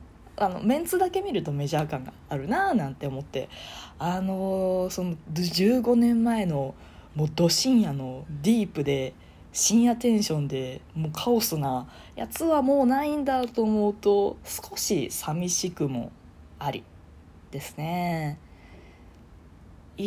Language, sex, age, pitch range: Japanese, female, 20-39, 135-185 Hz